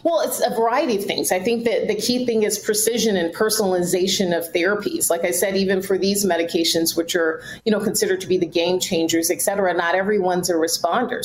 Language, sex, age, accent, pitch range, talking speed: English, female, 30-49, American, 175-225 Hz, 220 wpm